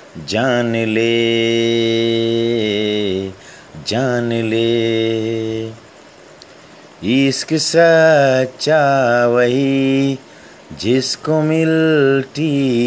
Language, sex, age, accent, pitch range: Hindi, male, 30-49, native, 115-170 Hz